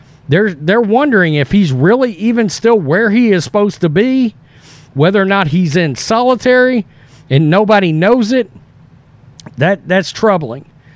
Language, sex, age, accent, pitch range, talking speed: English, male, 40-59, American, 165-230 Hz, 150 wpm